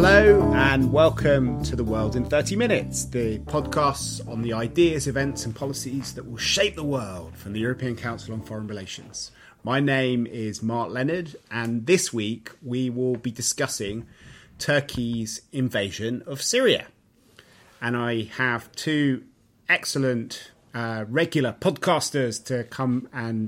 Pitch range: 115-135 Hz